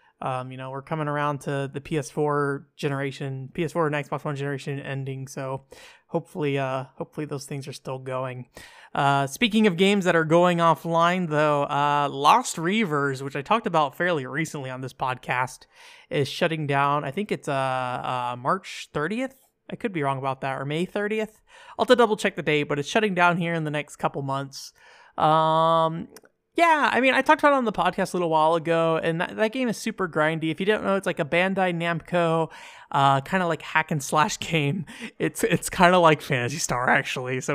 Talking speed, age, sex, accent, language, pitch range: 210 wpm, 20-39, male, American, English, 140-175 Hz